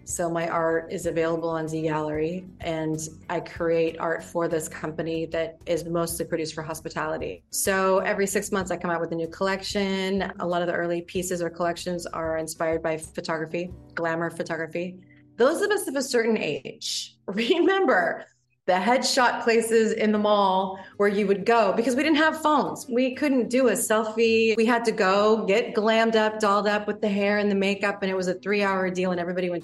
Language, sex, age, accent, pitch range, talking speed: English, female, 30-49, American, 165-200 Hz, 200 wpm